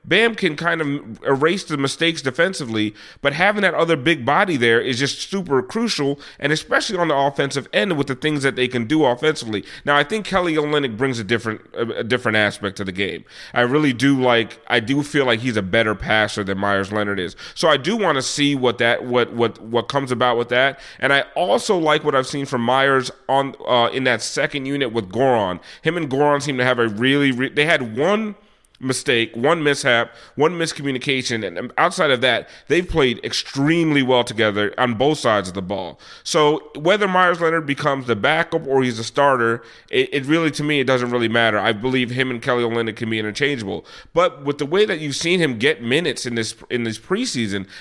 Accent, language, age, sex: American, English, 30-49, male